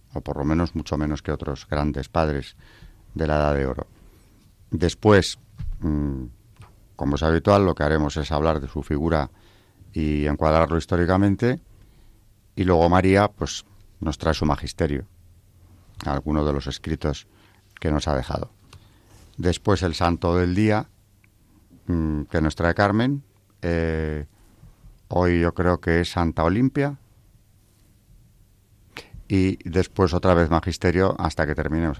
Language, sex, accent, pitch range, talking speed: Spanish, male, Spanish, 80-100 Hz, 130 wpm